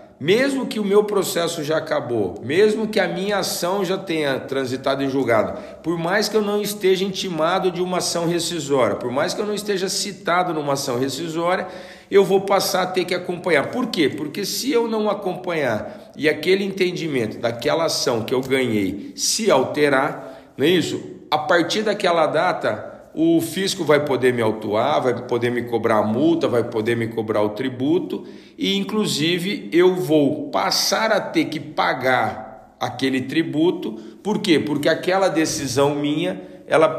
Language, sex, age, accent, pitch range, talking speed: Portuguese, male, 50-69, Brazilian, 130-190 Hz, 170 wpm